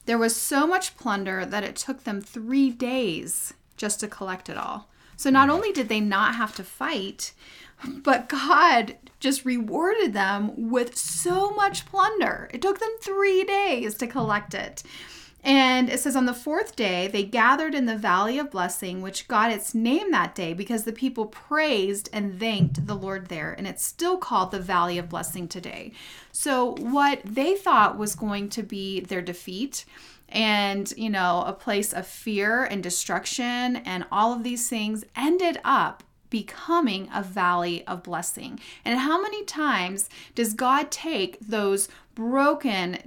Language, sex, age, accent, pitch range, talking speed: English, female, 30-49, American, 200-270 Hz, 165 wpm